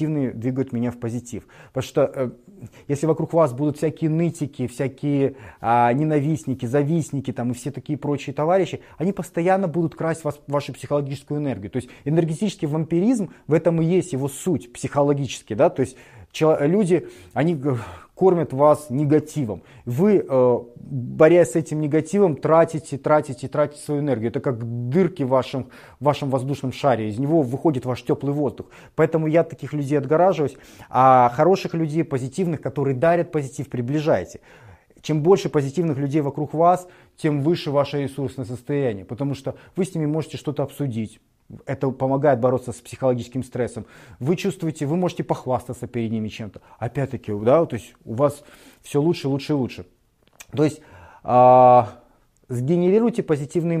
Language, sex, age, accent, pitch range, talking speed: Russian, male, 30-49, native, 125-160 Hz, 150 wpm